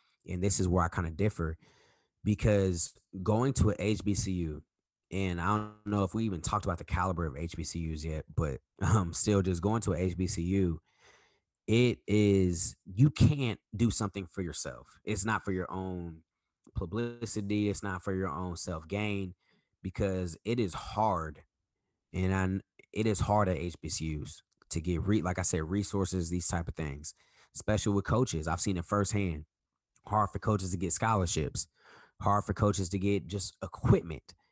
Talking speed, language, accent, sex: 170 wpm, English, American, male